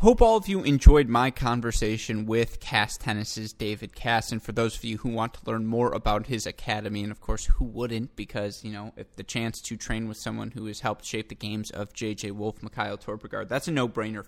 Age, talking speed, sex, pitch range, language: 20-39, 225 wpm, male, 105-115 Hz, English